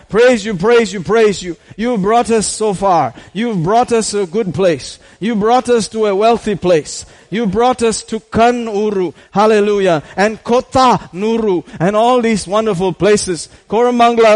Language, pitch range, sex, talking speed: English, 185-235 Hz, male, 165 wpm